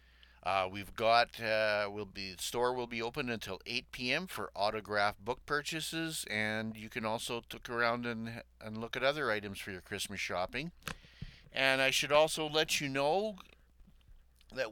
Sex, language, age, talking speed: male, English, 50-69, 165 wpm